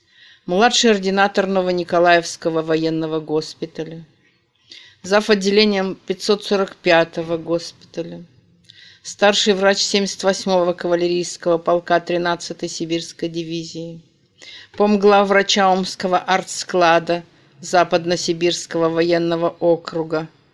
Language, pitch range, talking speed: Russian, 165-195 Hz, 70 wpm